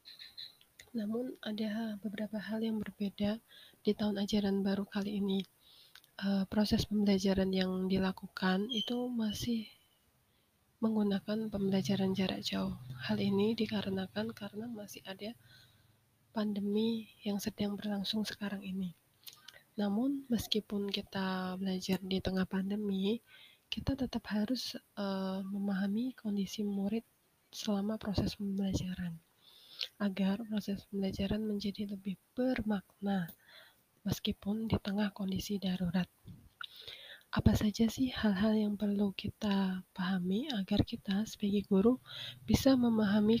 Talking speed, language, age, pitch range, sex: 105 wpm, Indonesian, 20-39, 190-215 Hz, female